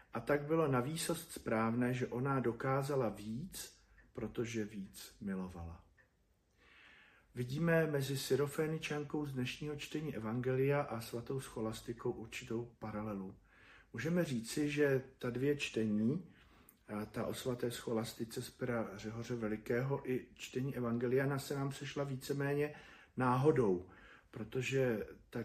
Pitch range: 115-135 Hz